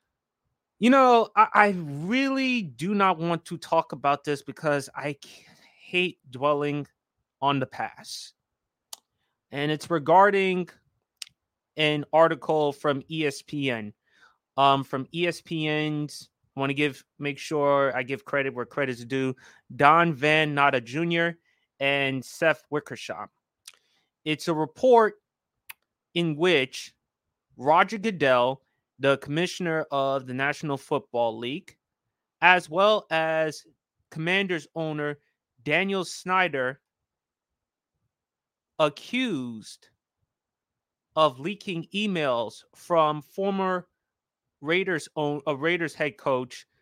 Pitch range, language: 140-175 Hz, English